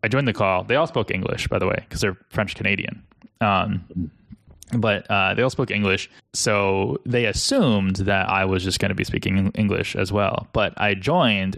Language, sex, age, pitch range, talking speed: English, male, 20-39, 100-120 Hz, 205 wpm